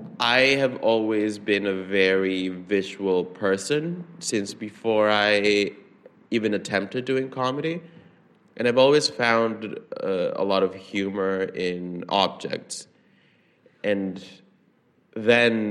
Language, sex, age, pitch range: English, male, 20-39, 90-120 Hz